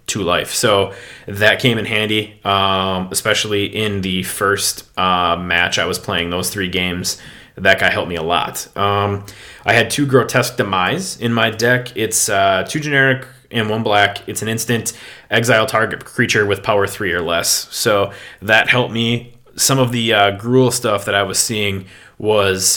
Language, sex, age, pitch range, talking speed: English, male, 20-39, 100-120 Hz, 180 wpm